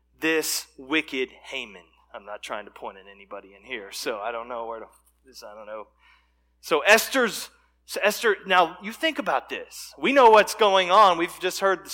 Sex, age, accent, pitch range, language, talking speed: male, 30-49, American, 120-190 Hz, English, 200 wpm